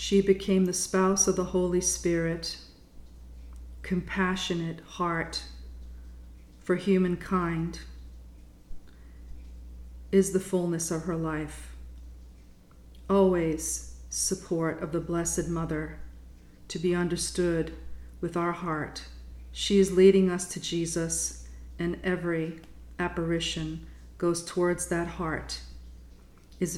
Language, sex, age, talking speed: English, female, 40-59, 100 wpm